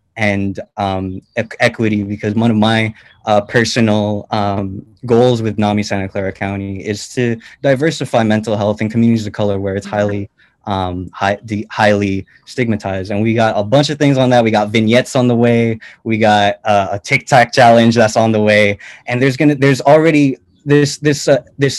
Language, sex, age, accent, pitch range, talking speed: English, male, 20-39, American, 105-120 Hz, 180 wpm